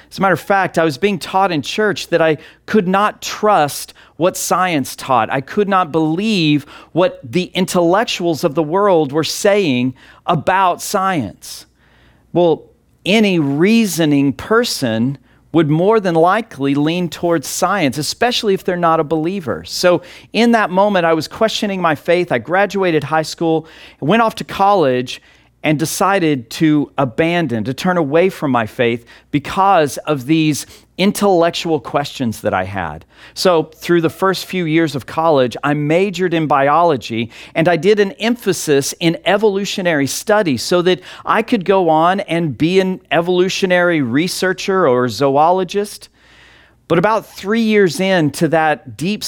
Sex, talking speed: male, 150 wpm